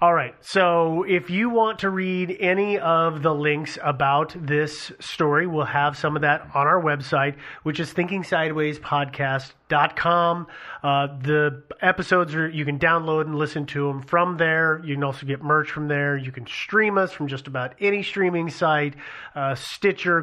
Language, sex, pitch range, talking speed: English, male, 140-175 Hz, 170 wpm